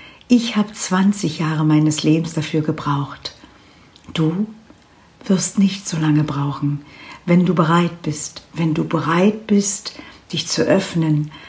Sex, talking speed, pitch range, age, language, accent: female, 130 wpm, 150-190 Hz, 60-79, German, German